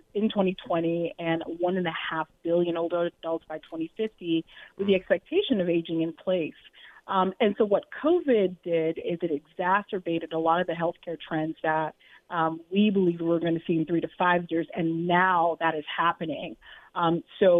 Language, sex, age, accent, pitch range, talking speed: English, female, 30-49, American, 165-190 Hz, 180 wpm